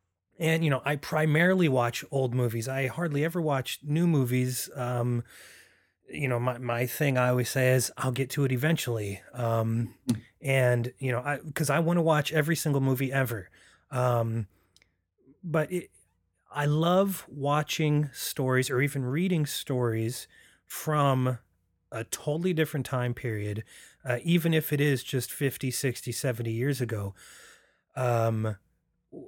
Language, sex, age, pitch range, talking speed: English, male, 30-49, 120-150 Hz, 150 wpm